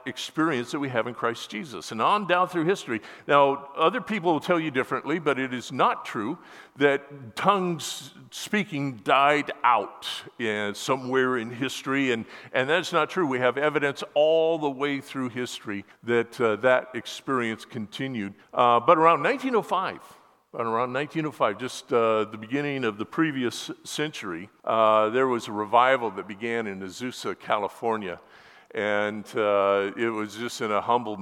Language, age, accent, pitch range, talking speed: English, 50-69, American, 110-145 Hz, 155 wpm